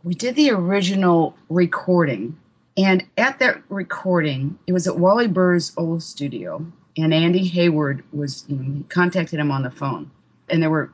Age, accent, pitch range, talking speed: 40-59, American, 145-180 Hz, 165 wpm